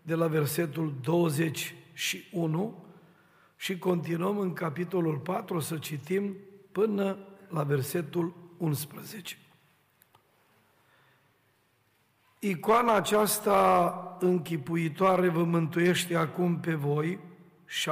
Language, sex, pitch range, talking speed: Romanian, male, 165-195 Hz, 80 wpm